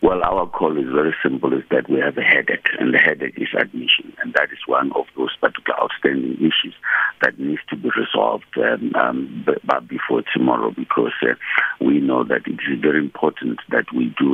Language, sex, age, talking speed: English, male, 60-79, 200 wpm